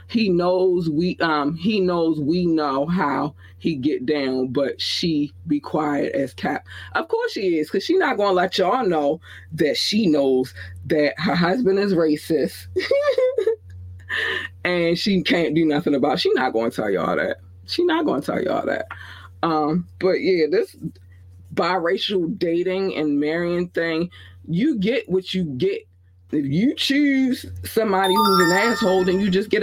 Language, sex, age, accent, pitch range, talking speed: English, female, 20-39, American, 125-190 Hz, 170 wpm